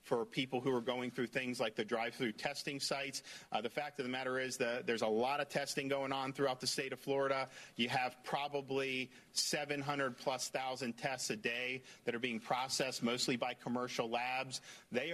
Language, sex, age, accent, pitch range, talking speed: English, male, 50-69, American, 125-145 Hz, 200 wpm